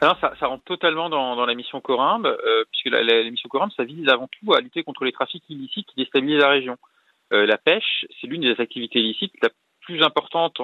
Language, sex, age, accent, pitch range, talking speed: French, male, 30-49, French, 130-195 Hz, 235 wpm